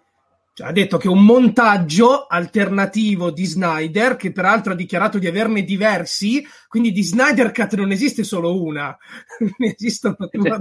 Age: 30-49